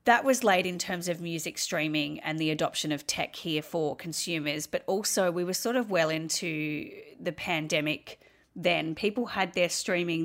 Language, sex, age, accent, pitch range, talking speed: English, female, 30-49, Australian, 160-195 Hz, 180 wpm